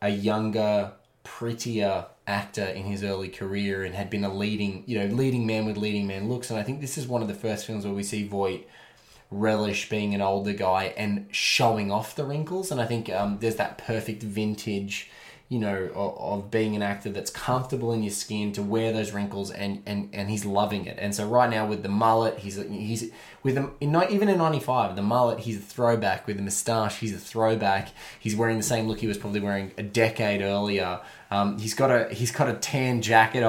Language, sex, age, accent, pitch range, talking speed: English, male, 20-39, Australian, 100-115 Hz, 215 wpm